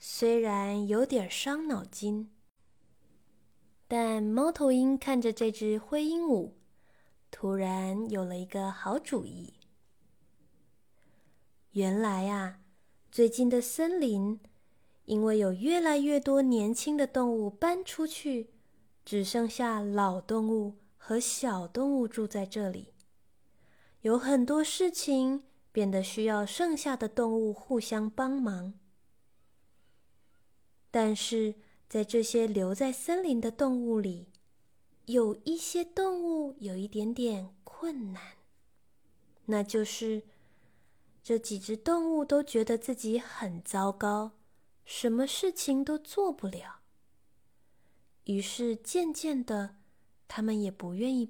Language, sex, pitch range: Chinese, female, 205-270 Hz